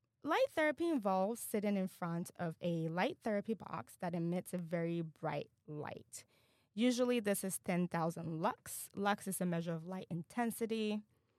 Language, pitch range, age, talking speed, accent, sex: English, 175-235 Hz, 20-39, 155 wpm, American, female